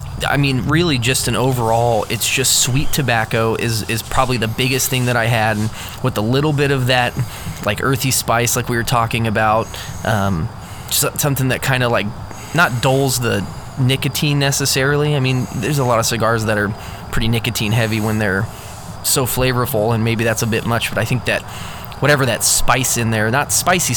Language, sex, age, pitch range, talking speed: English, male, 20-39, 110-130 Hz, 195 wpm